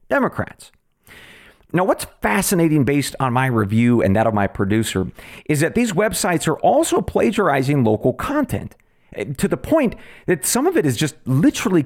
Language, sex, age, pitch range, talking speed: English, male, 40-59, 120-195 Hz, 160 wpm